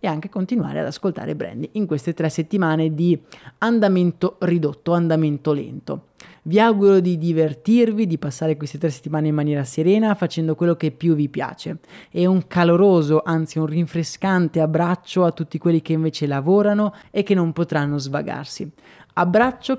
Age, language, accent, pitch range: 20-39, Italian, native, 155-195 Hz